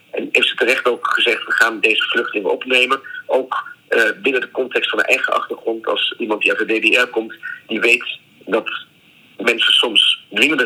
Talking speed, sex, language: 185 wpm, male, Dutch